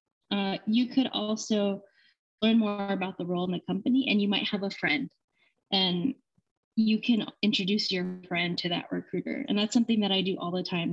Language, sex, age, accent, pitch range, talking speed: English, female, 20-39, American, 175-215 Hz, 200 wpm